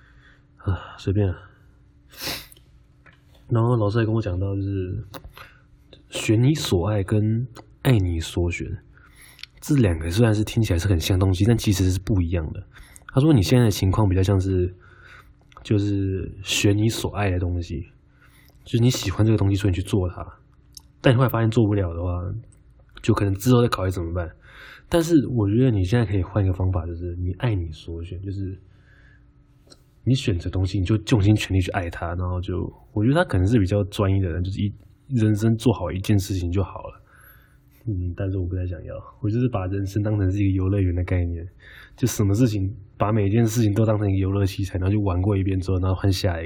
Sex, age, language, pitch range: male, 20-39, Chinese, 90-110 Hz